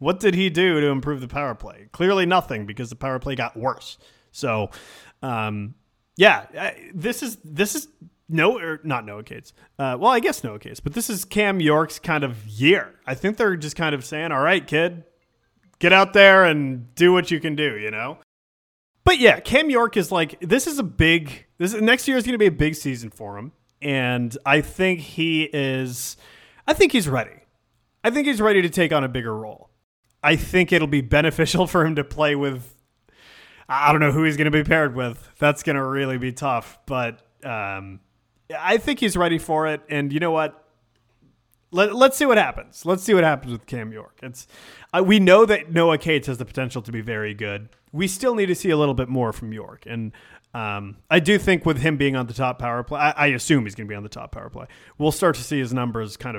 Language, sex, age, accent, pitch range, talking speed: English, male, 30-49, American, 125-175 Hz, 230 wpm